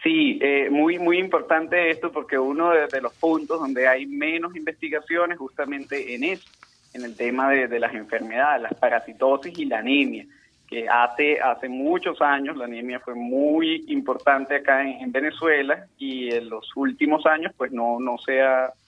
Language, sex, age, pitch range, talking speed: Spanish, male, 30-49, 125-155 Hz, 170 wpm